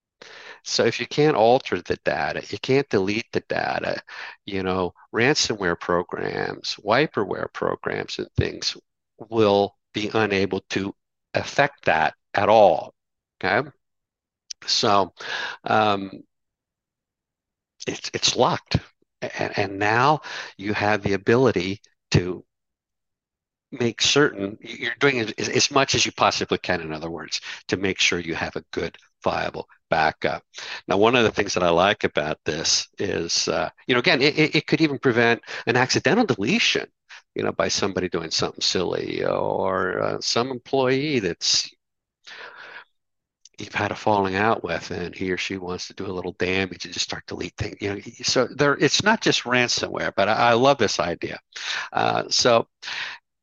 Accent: American